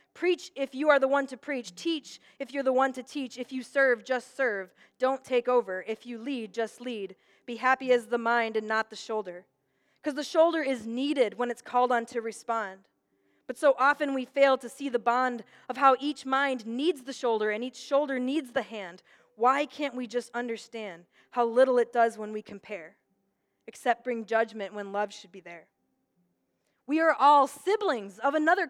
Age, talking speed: 20-39, 200 wpm